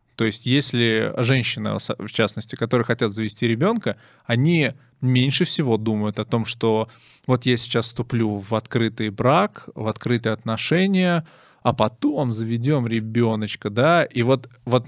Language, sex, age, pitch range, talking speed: Russian, male, 20-39, 110-135 Hz, 140 wpm